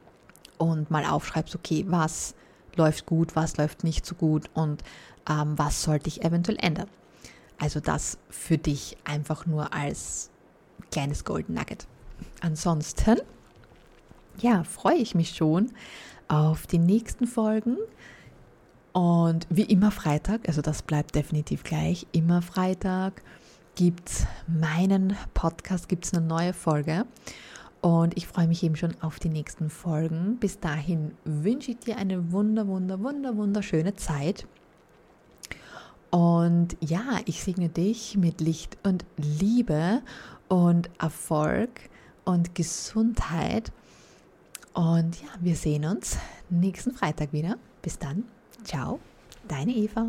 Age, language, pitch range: 20-39, German, 160-195 Hz